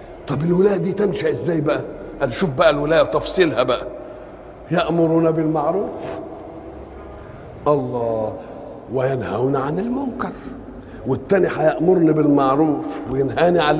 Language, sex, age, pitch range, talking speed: Arabic, male, 50-69, 155-210 Hz, 100 wpm